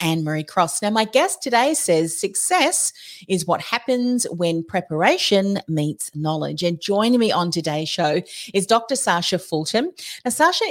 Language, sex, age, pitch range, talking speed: English, female, 40-59, 165-220 Hz, 150 wpm